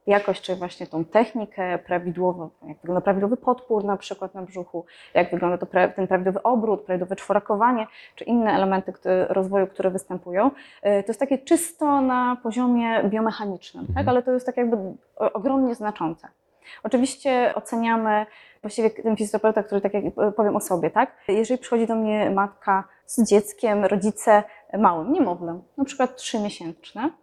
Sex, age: female, 20-39